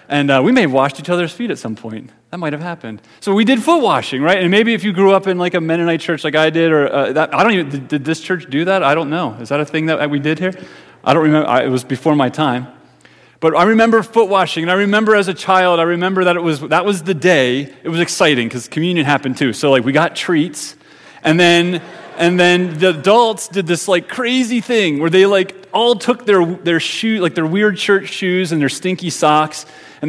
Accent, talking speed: American, 255 wpm